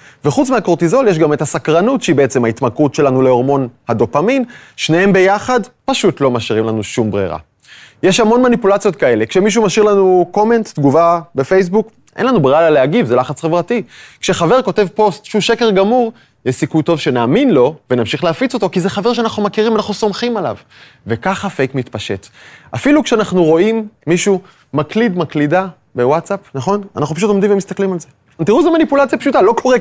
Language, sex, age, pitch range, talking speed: Hebrew, male, 20-39, 145-215 Hz, 155 wpm